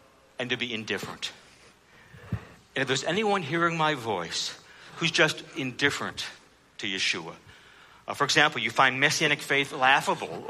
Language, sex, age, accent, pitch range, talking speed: English, male, 60-79, American, 125-195 Hz, 135 wpm